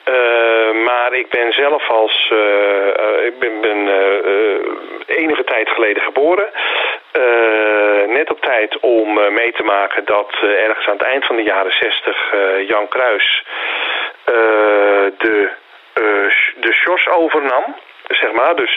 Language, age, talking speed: Dutch, 40-59, 145 wpm